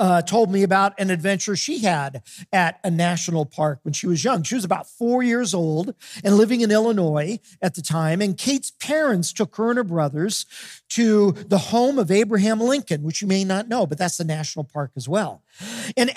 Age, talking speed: 40-59, 210 wpm